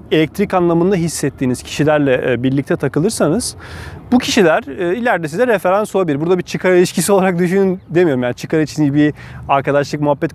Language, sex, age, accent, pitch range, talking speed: Turkish, male, 30-49, native, 145-205 Hz, 145 wpm